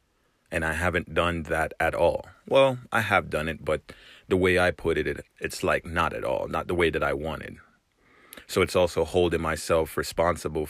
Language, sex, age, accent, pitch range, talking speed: English, male, 30-49, American, 80-90 Hz, 200 wpm